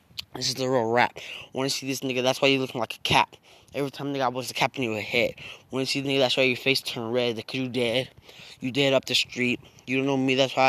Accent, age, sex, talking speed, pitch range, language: American, 10-29, male, 285 wpm, 120-135 Hz, English